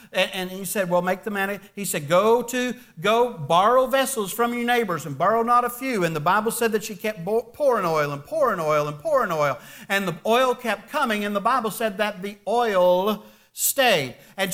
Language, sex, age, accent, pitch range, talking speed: English, male, 50-69, American, 210-275 Hz, 210 wpm